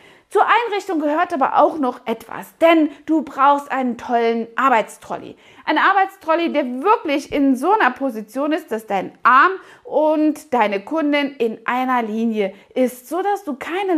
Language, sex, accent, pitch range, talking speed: German, female, German, 235-300 Hz, 155 wpm